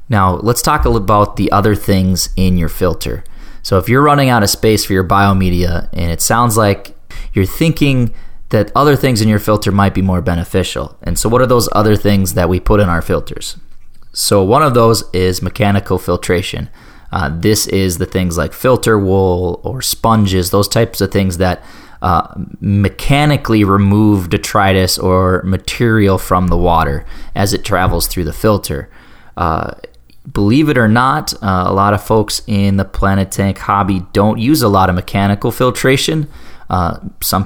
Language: English